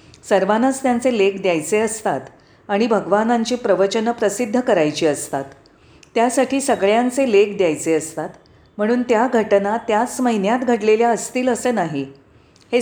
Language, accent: Marathi, native